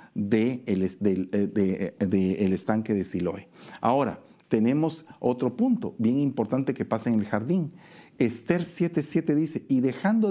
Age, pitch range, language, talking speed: 50-69, 100-140 Hz, Spanish, 140 wpm